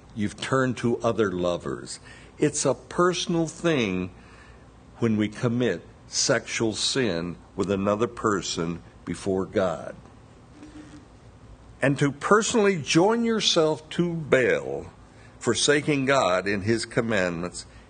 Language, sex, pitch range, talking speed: English, male, 100-140 Hz, 105 wpm